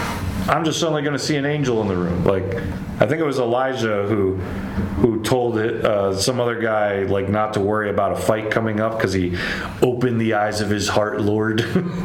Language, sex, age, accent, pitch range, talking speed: English, male, 30-49, American, 95-115 Hz, 215 wpm